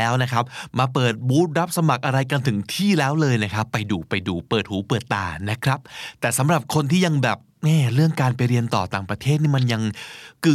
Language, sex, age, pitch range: Thai, male, 20-39, 115-150 Hz